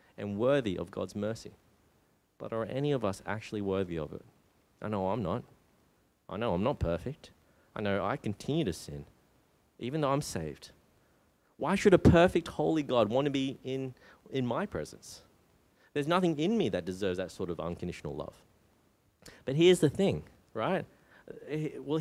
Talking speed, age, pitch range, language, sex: 170 wpm, 30-49, 95-150 Hz, English, male